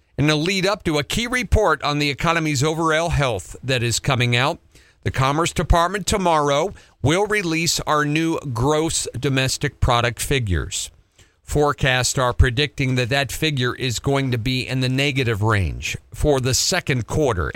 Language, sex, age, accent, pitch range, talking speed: English, male, 50-69, American, 100-150 Hz, 160 wpm